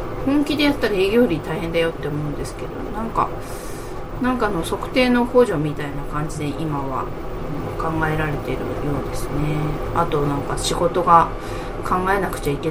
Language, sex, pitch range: Japanese, female, 145-180 Hz